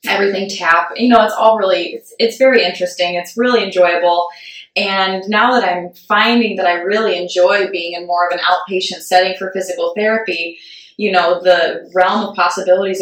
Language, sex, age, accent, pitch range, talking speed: English, female, 20-39, American, 175-205 Hz, 180 wpm